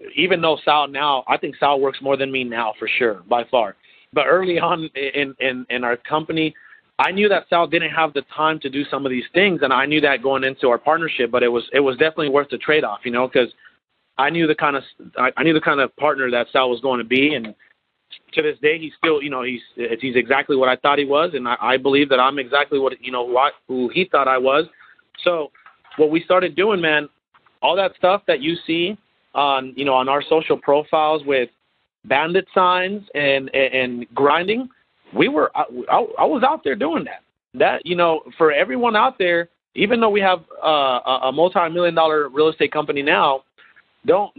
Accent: American